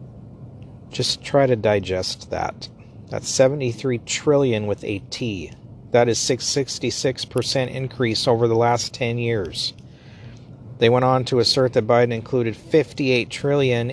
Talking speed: 145 wpm